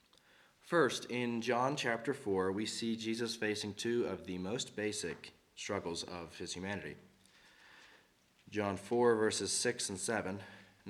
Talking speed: 130 wpm